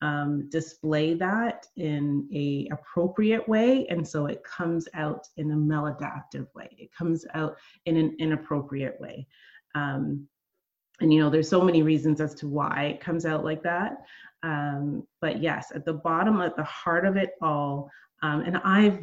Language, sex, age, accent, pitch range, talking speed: English, female, 30-49, American, 155-215 Hz, 170 wpm